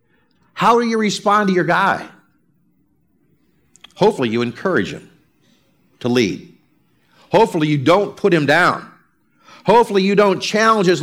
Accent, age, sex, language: American, 50-69, male, English